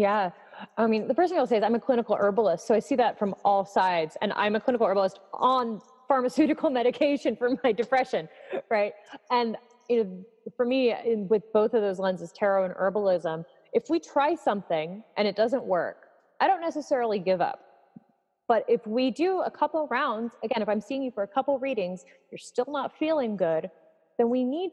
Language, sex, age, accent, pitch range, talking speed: English, female, 30-49, American, 210-265 Hz, 200 wpm